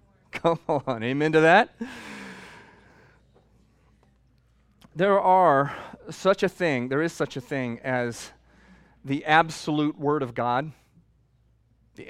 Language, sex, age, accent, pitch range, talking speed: English, male, 40-59, American, 105-140 Hz, 110 wpm